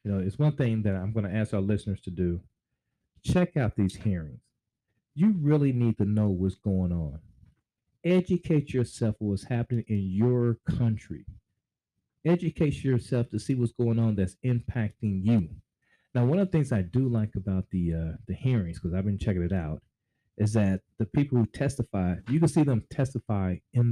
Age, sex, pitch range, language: 40-59, male, 95-125 Hz, English